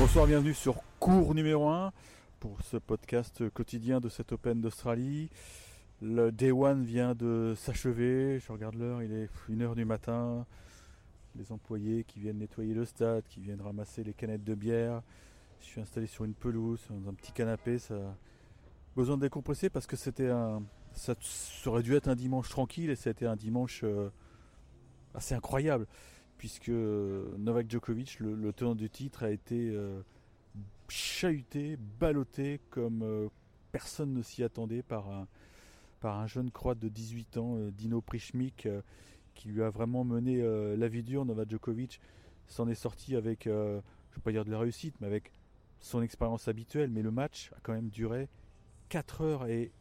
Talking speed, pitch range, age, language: 175 wpm, 105-125 Hz, 30-49, French